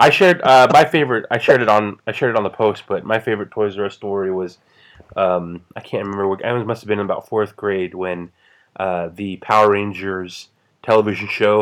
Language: English